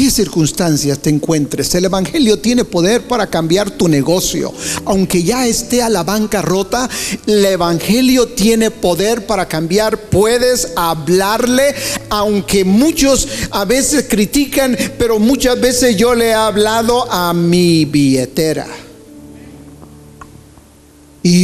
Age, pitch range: 50-69, 215-340 Hz